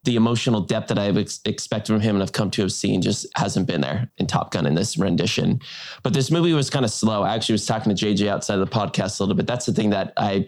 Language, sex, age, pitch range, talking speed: English, male, 20-39, 100-115 Hz, 280 wpm